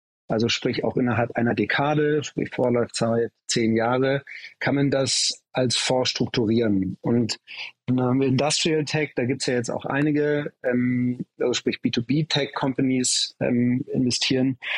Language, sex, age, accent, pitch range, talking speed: German, male, 40-59, German, 120-145 Hz, 140 wpm